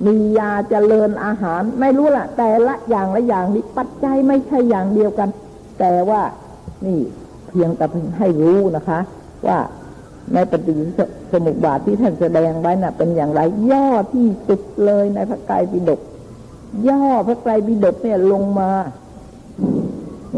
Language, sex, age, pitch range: Thai, female, 60-79, 175-225 Hz